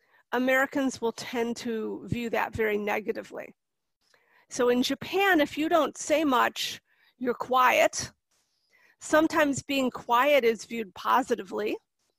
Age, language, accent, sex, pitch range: 40-59, Japanese, American, female, 230-290 Hz